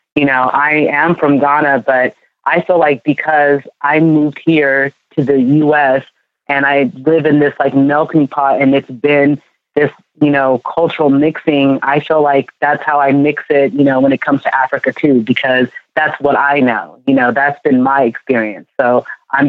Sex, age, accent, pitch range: female, 30-49, American, 135-160 Hz